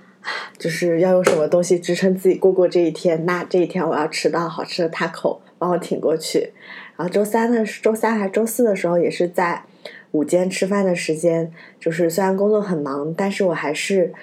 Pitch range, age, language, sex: 160-195 Hz, 20-39, Chinese, female